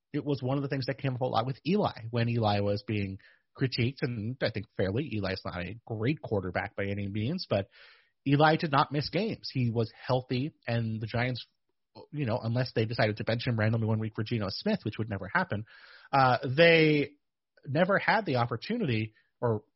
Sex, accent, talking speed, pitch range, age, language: male, American, 205 wpm, 110-140 Hz, 30-49, English